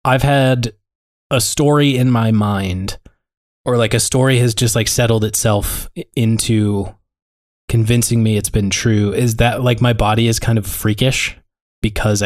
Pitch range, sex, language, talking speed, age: 100-115 Hz, male, English, 155 wpm, 20-39